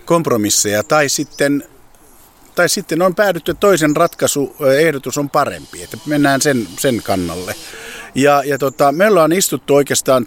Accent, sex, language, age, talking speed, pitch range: native, male, Finnish, 50-69, 145 wpm, 110-150 Hz